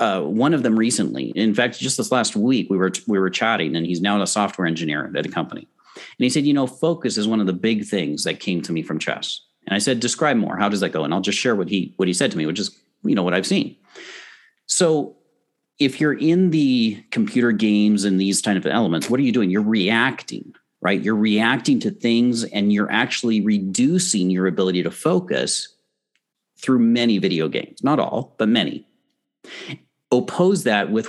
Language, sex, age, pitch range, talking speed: English, male, 40-59, 100-145 Hz, 215 wpm